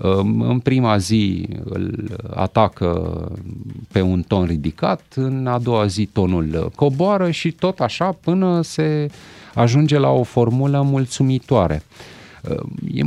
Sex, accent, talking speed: male, native, 120 wpm